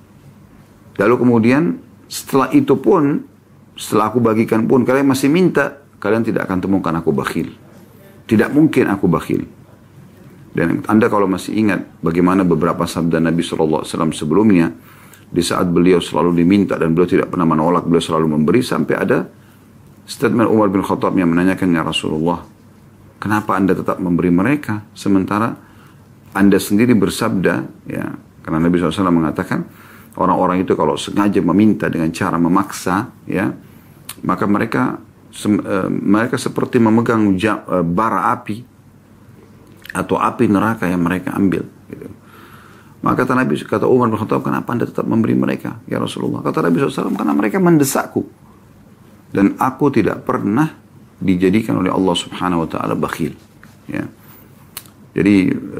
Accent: native